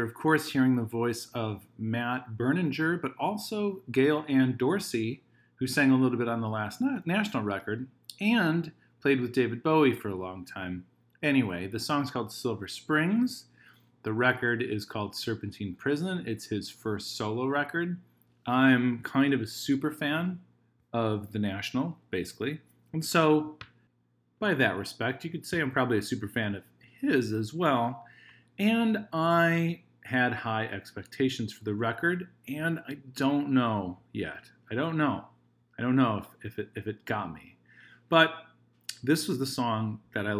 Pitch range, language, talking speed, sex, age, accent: 110-150 Hz, English, 160 wpm, male, 30-49, American